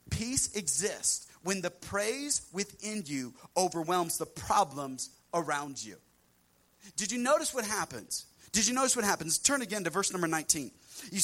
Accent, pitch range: American, 185-240 Hz